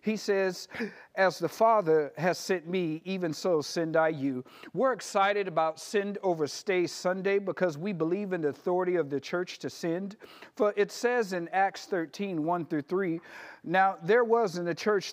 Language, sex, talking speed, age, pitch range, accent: English, male, 185 wpm, 50-69, 155-200 Hz, American